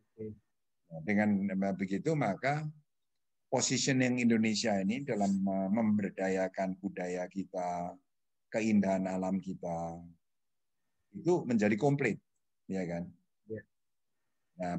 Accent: native